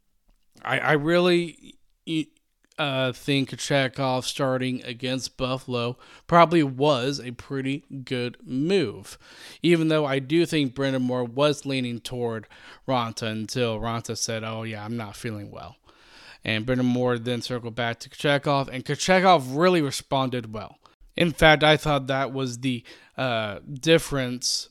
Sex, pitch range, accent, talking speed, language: male, 120-155 Hz, American, 140 wpm, English